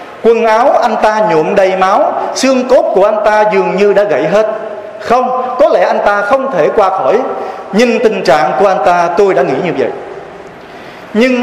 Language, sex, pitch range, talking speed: Vietnamese, male, 190-245 Hz, 200 wpm